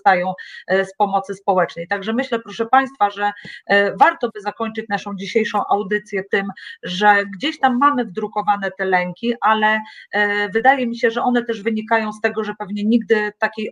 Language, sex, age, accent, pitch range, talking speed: Polish, female, 30-49, native, 195-225 Hz, 160 wpm